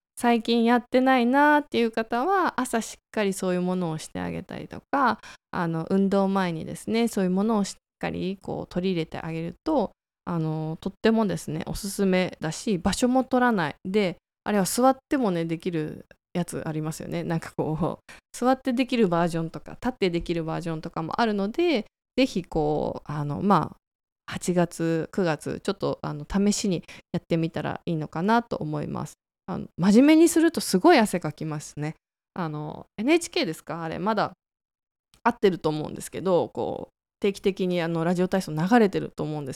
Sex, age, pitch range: female, 20-39, 165-235 Hz